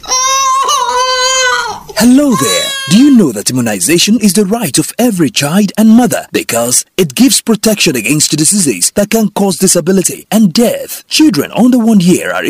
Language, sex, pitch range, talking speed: English, male, 165-225 Hz, 155 wpm